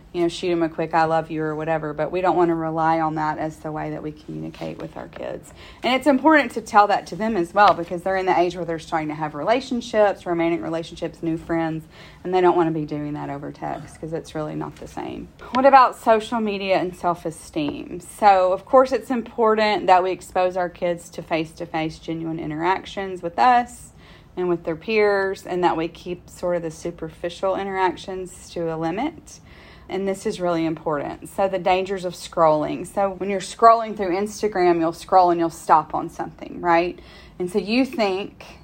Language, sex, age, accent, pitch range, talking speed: English, female, 30-49, American, 165-195 Hz, 210 wpm